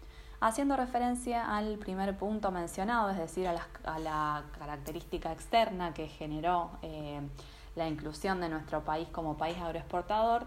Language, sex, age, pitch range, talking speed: Spanish, female, 20-39, 165-205 Hz, 140 wpm